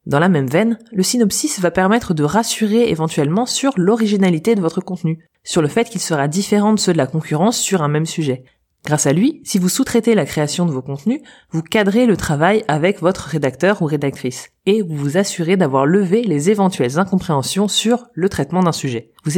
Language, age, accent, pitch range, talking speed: French, 20-39, French, 150-205 Hz, 205 wpm